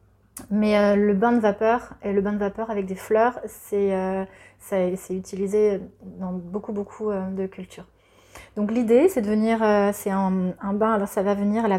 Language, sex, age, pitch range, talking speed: French, female, 30-49, 200-230 Hz, 195 wpm